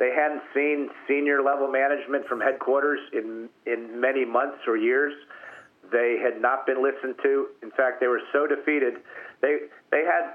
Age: 50-69